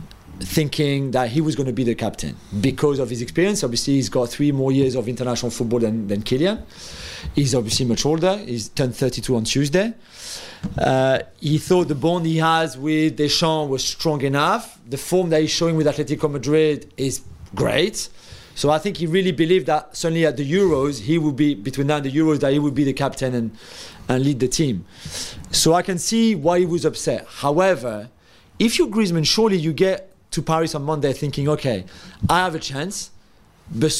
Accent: French